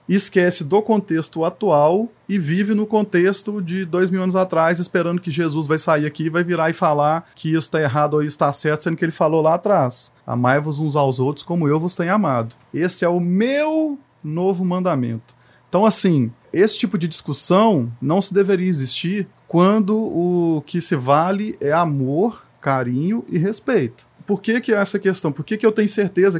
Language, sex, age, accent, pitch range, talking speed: Portuguese, male, 20-39, Brazilian, 150-195 Hz, 190 wpm